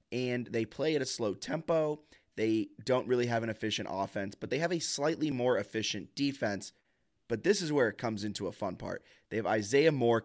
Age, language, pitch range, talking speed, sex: 20-39, English, 105-130 Hz, 210 wpm, male